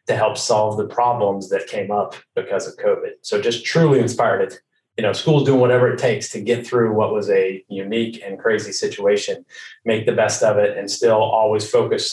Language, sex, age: English, male, 30-49